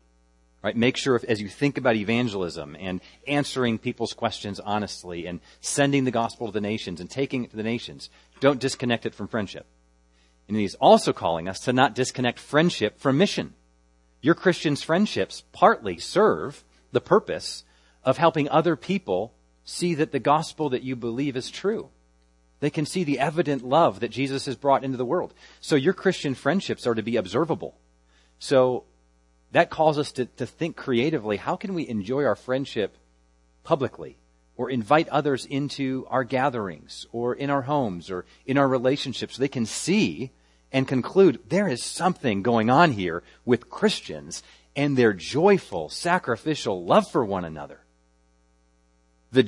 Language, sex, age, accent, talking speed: English, male, 40-59, American, 165 wpm